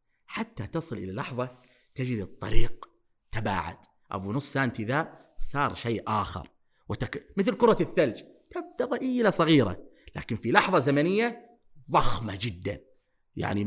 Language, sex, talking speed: Arabic, male, 125 wpm